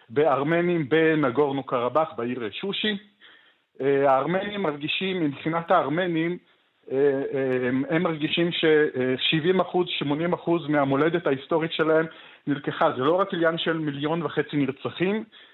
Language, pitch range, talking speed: Hebrew, 135-175 Hz, 95 wpm